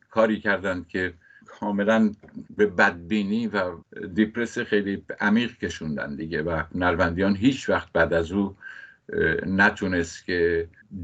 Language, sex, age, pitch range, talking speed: Persian, male, 50-69, 90-110 Hz, 115 wpm